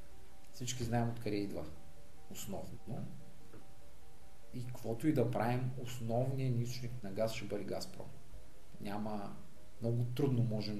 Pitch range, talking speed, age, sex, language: 110-145 Hz, 120 wpm, 40-59, male, Bulgarian